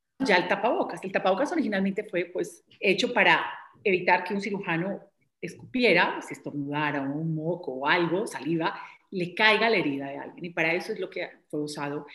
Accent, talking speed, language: Colombian, 185 wpm, Spanish